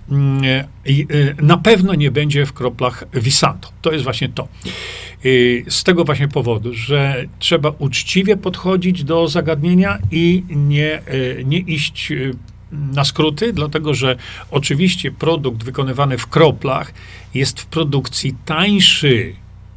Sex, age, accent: male, 40-59, native